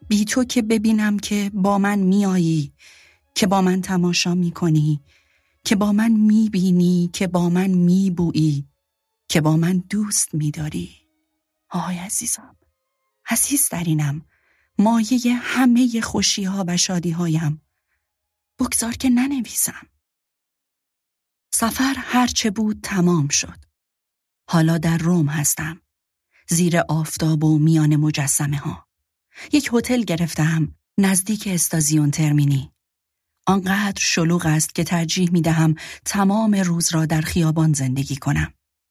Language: Persian